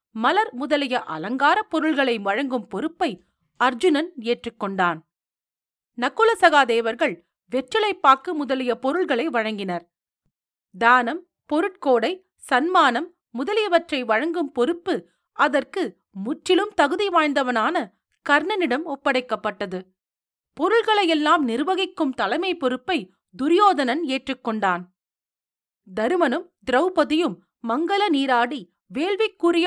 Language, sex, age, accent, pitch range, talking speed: Tamil, female, 40-59, native, 235-335 Hz, 75 wpm